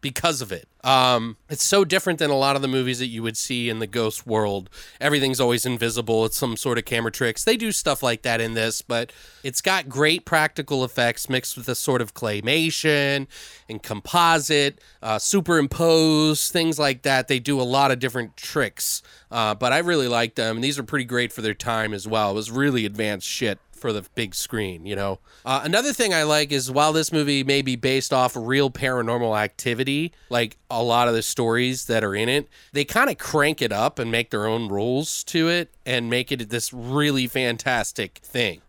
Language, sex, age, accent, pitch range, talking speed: English, male, 30-49, American, 115-145 Hz, 210 wpm